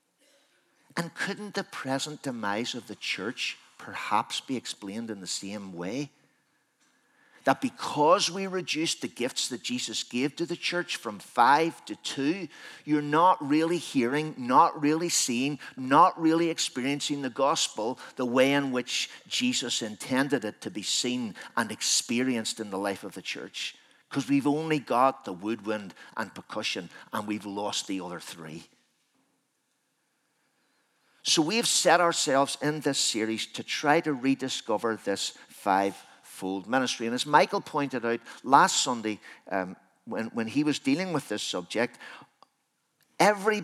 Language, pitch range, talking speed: English, 120-165 Hz, 145 wpm